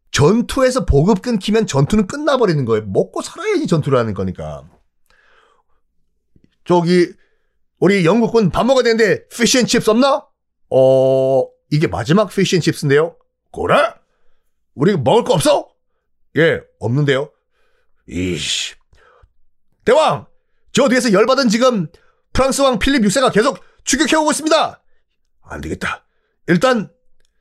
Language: Korean